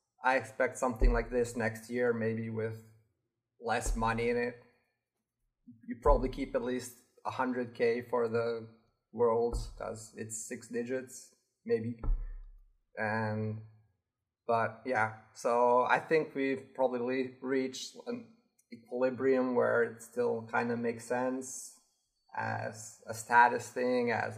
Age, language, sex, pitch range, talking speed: 30-49, English, male, 115-135 Hz, 125 wpm